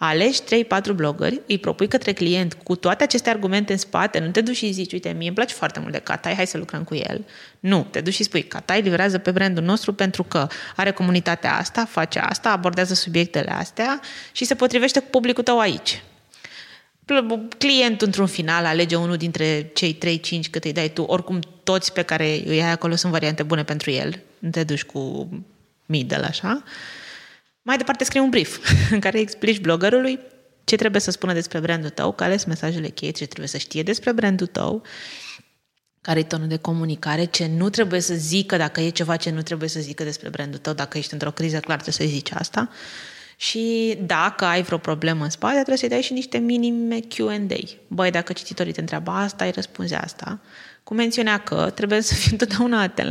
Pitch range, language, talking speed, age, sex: 165-220 Hz, Romanian, 200 wpm, 20-39, female